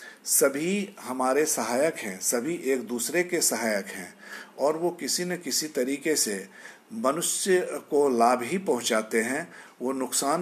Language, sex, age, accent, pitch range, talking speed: Hindi, male, 50-69, native, 120-170 Hz, 145 wpm